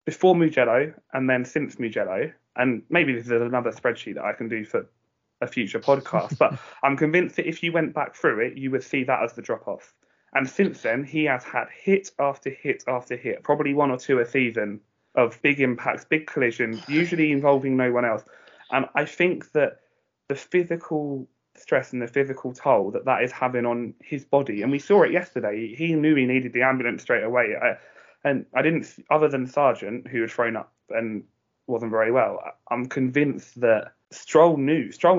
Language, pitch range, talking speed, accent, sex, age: English, 120-150 Hz, 200 wpm, British, male, 20-39